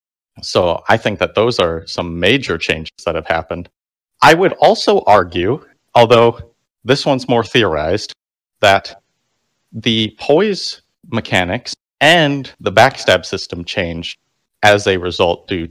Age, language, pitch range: 30-49, English, 90-115 Hz